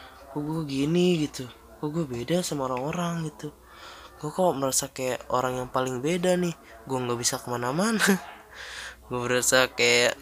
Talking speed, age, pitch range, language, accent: 140 wpm, 20-39, 125-155 Hz, Indonesian, native